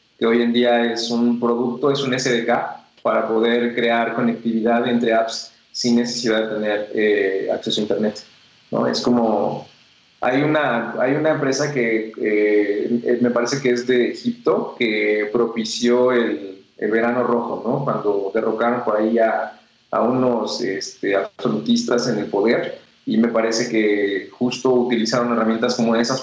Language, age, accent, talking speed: Spanish, 20-39, Mexican, 155 wpm